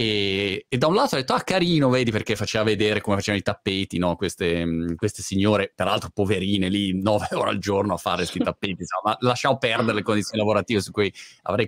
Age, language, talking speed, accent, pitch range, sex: 30-49, Italian, 220 wpm, native, 110-170 Hz, male